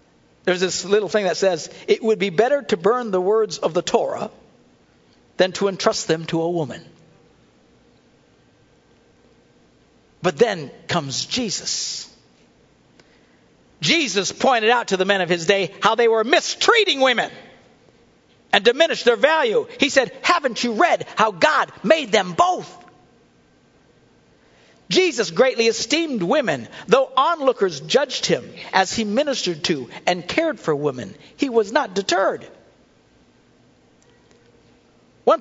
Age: 60-79